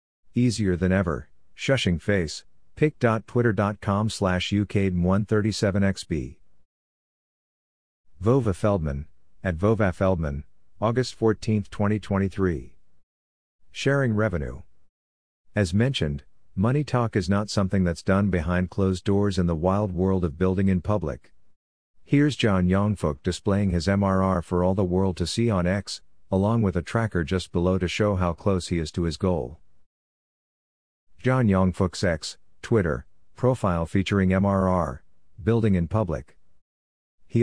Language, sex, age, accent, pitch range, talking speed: English, male, 50-69, American, 85-105 Hz, 125 wpm